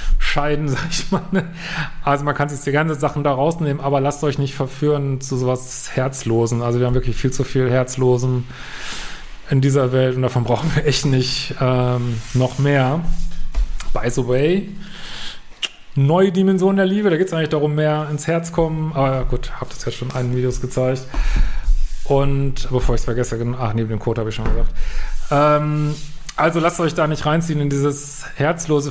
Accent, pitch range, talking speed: German, 130-155 Hz, 190 wpm